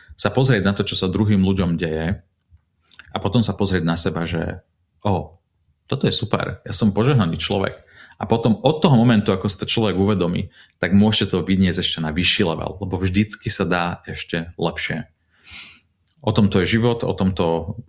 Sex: male